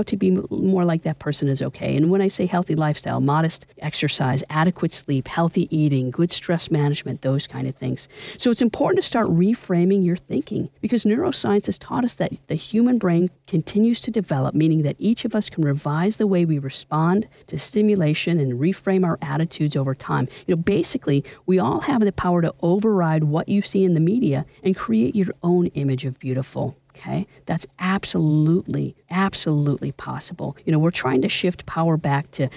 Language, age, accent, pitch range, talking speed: English, 50-69, American, 140-185 Hz, 190 wpm